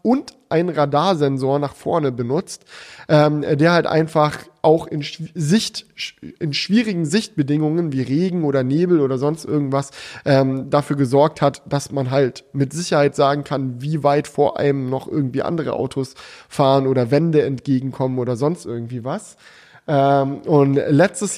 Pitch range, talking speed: 130-160 Hz, 145 wpm